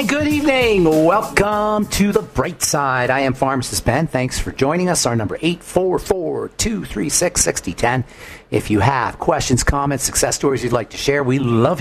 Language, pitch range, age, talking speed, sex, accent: English, 110-145 Hz, 50-69, 160 wpm, male, American